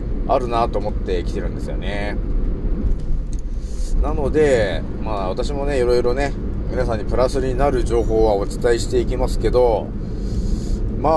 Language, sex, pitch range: Japanese, male, 100-160 Hz